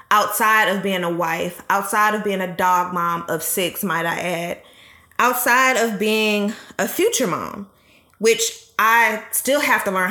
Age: 20-39